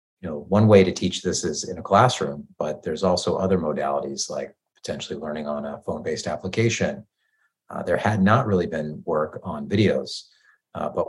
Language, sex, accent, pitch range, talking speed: English, male, American, 80-95 Hz, 185 wpm